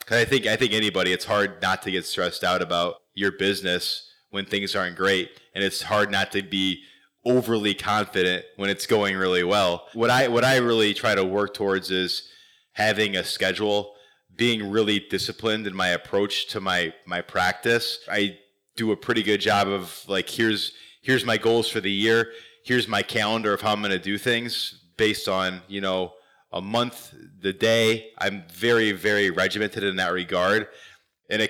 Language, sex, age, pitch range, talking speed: English, male, 20-39, 95-110 Hz, 185 wpm